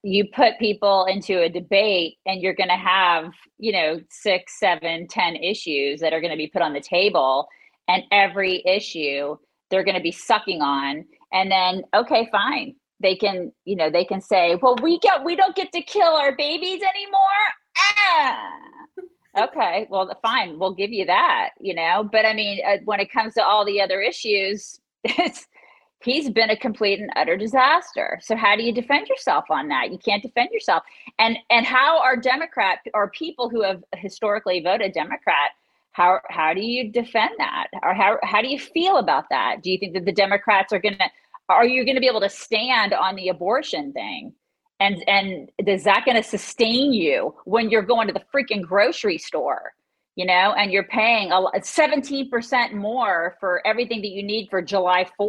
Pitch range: 190-260 Hz